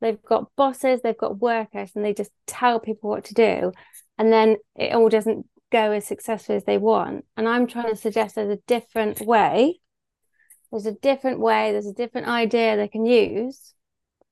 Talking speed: 190 wpm